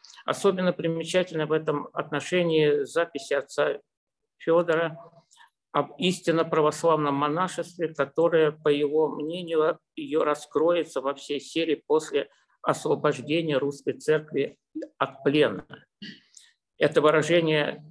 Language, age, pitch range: Russian, 50-69, 150-175 Hz